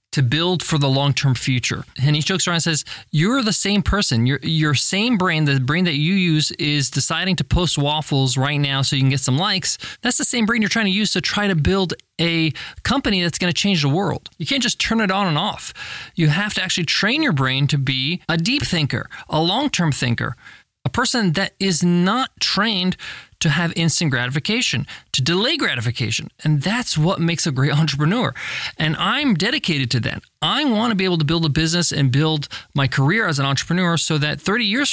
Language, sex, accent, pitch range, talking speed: English, male, American, 150-195 Hz, 220 wpm